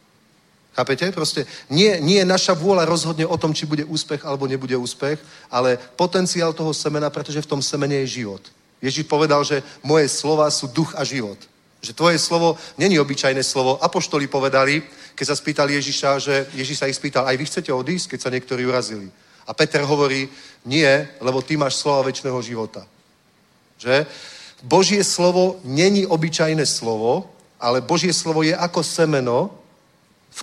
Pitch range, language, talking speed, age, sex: 130-165 Hz, Czech, 165 wpm, 40-59, male